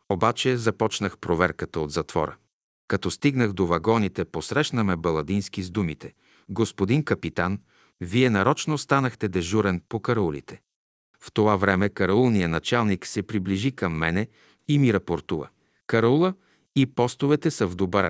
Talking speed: 135 wpm